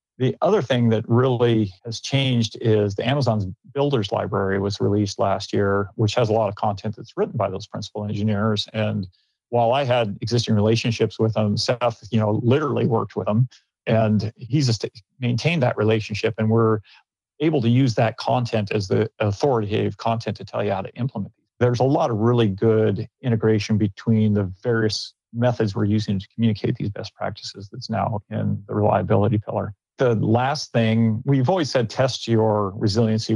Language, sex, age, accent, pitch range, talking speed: English, male, 40-59, American, 105-115 Hz, 175 wpm